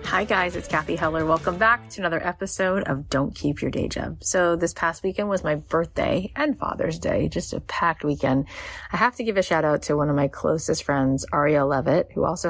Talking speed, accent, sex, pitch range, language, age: 225 wpm, American, female, 135-175 Hz, English, 30-49